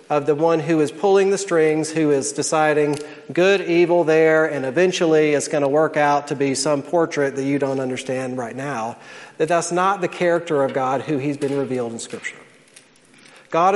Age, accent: 40-59, American